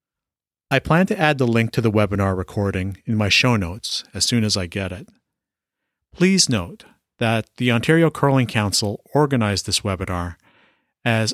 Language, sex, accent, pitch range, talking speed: English, male, American, 100-140 Hz, 165 wpm